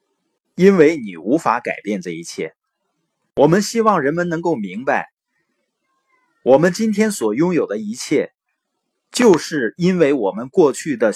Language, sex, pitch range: Chinese, male, 155-225 Hz